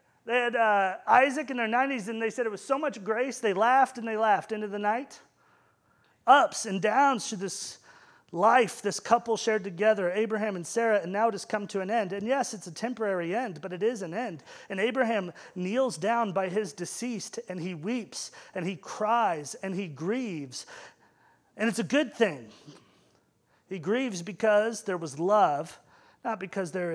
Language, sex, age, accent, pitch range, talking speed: English, male, 30-49, American, 190-235 Hz, 190 wpm